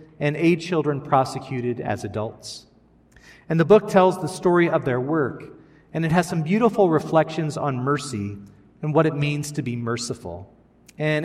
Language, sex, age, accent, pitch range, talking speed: English, male, 40-59, American, 130-165 Hz, 165 wpm